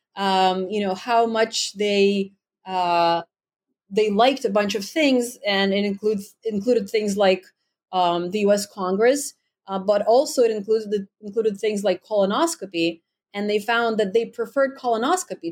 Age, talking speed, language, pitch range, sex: 30-49, 150 wpm, English, 195-230 Hz, female